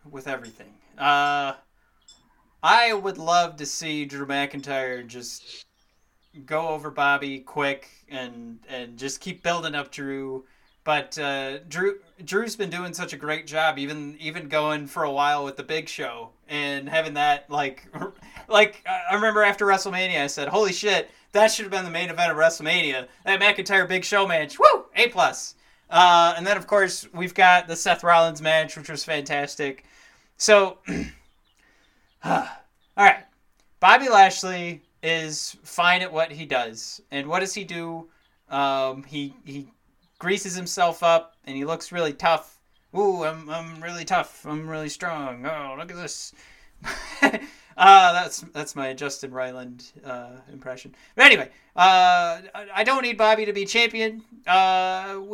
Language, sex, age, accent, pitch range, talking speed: English, male, 30-49, American, 140-190 Hz, 155 wpm